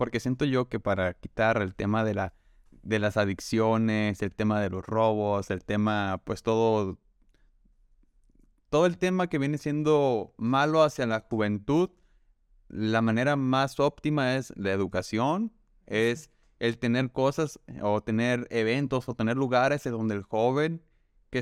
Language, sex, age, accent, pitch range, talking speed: Spanish, male, 20-39, Mexican, 115-145 Hz, 145 wpm